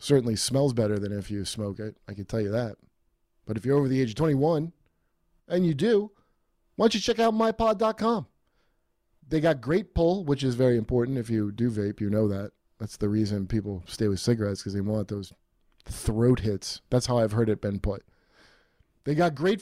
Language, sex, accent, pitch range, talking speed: English, male, American, 105-145 Hz, 210 wpm